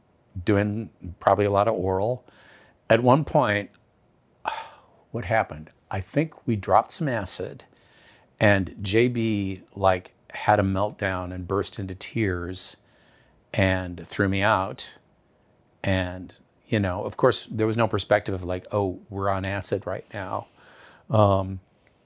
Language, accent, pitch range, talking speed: English, American, 95-115 Hz, 135 wpm